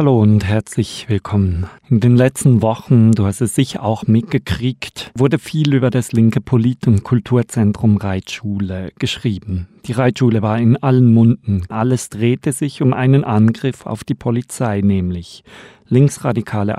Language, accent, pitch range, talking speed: German, German, 105-130 Hz, 145 wpm